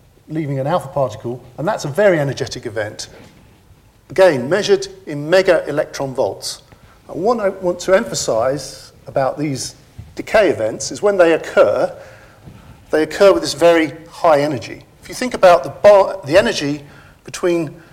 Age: 50-69